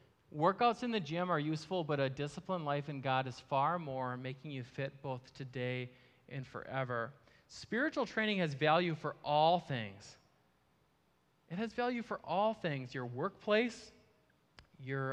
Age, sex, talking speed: 20-39, male, 150 wpm